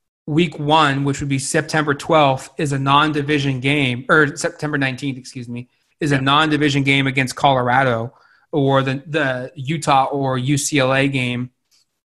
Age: 30-49